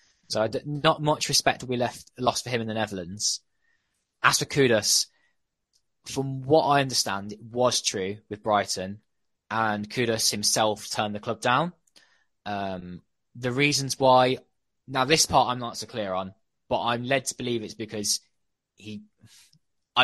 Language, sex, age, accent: English, male, 20-39, British